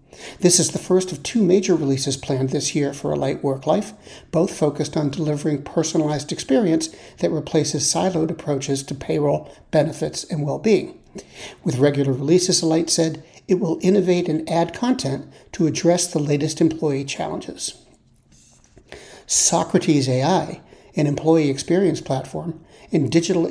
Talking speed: 140 wpm